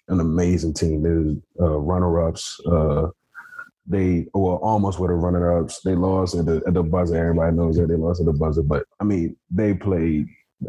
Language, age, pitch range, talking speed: English, 20-39, 85-100 Hz, 190 wpm